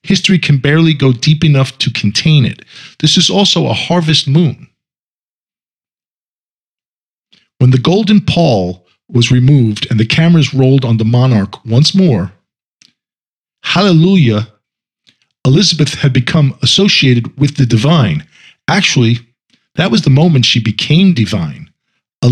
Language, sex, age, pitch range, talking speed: English, male, 40-59, 115-160 Hz, 125 wpm